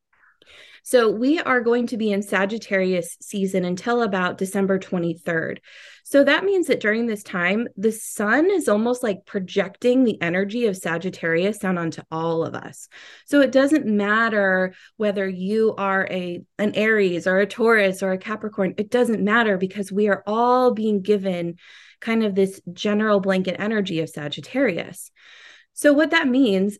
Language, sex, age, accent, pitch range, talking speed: English, female, 20-39, American, 195-255 Hz, 160 wpm